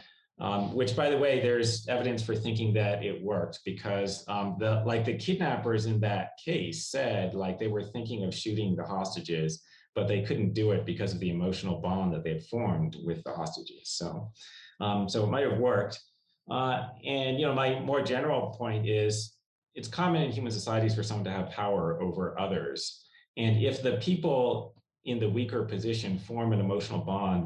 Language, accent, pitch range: English, American, 100-125 Hz